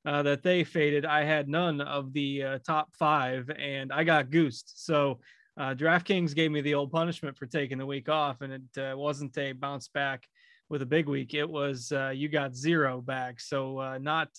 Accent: American